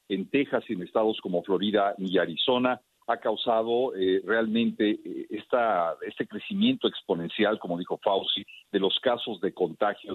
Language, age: Spanish, 50-69